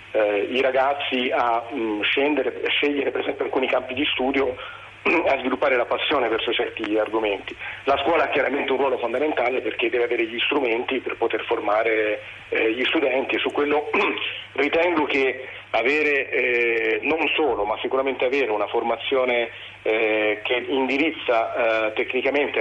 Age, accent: 40-59, native